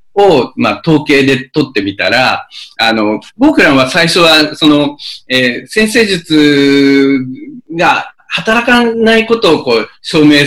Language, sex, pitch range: Japanese, male, 135-230 Hz